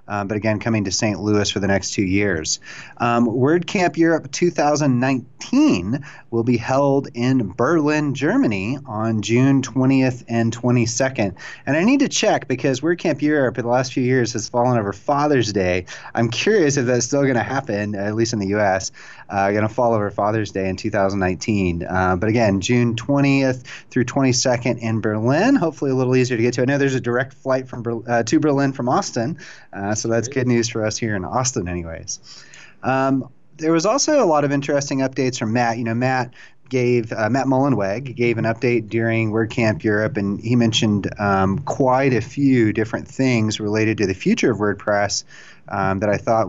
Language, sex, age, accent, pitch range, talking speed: English, male, 30-49, American, 105-130 Hz, 195 wpm